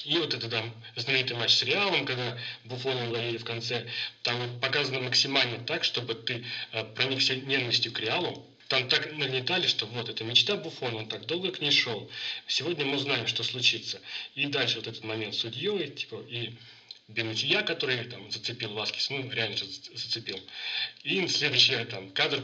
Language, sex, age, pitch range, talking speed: Russian, male, 30-49, 110-130 Hz, 170 wpm